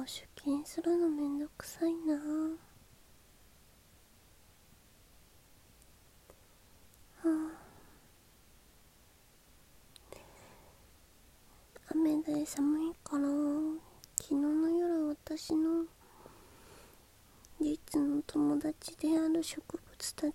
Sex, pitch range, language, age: female, 270-315 Hz, Japanese, 20-39